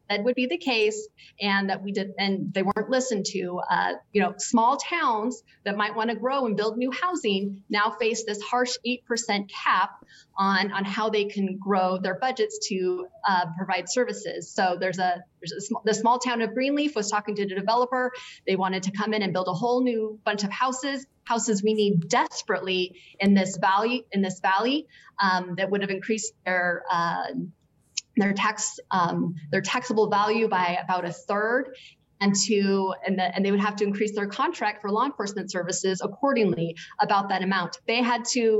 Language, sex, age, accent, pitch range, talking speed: English, female, 30-49, American, 195-235 Hz, 185 wpm